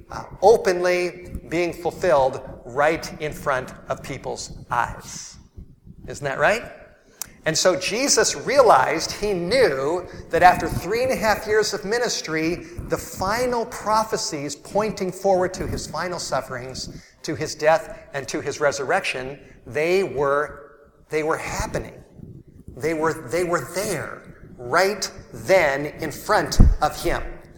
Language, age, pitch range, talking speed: English, 50-69, 150-190 Hz, 130 wpm